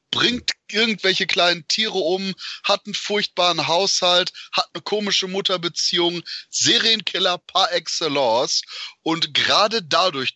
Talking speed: 110 wpm